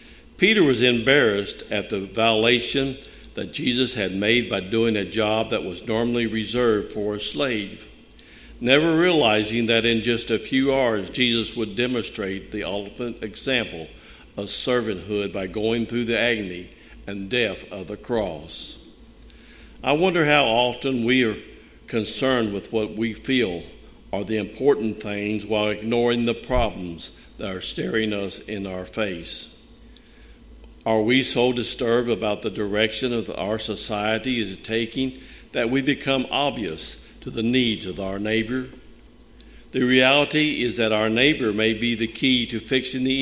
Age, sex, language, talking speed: 60-79, male, English, 150 wpm